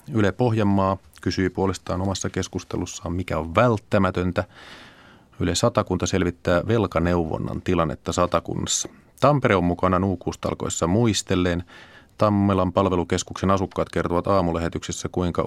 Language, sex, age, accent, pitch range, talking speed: Finnish, male, 30-49, native, 90-115 Hz, 100 wpm